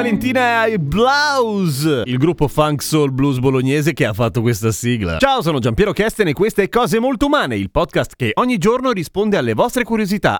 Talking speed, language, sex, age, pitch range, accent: 190 wpm, Italian, male, 30-49, 125-195 Hz, native